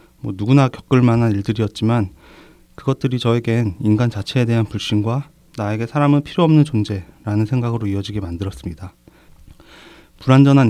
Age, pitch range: 30-49, 105-130 Hz